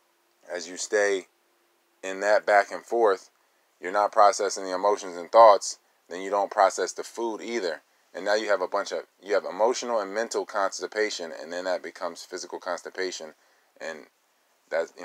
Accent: American